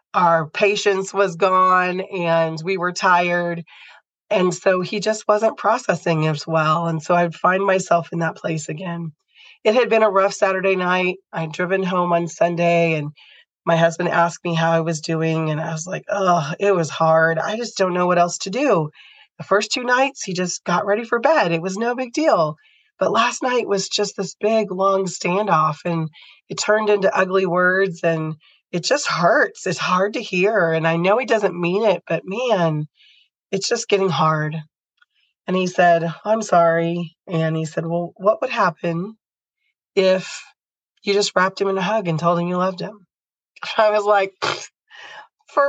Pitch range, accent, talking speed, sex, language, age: 170-215 Hz, American, 190 wpm, female, English, 30-49